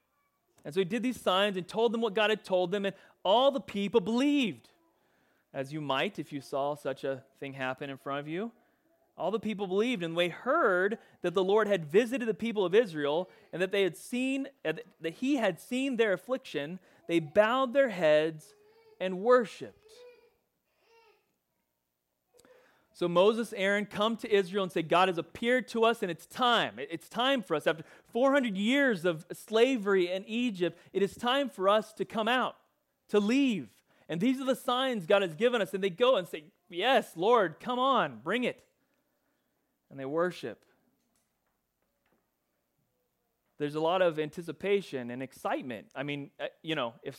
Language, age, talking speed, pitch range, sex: English, 30-49, 175 wpm, 165-245 Hz, male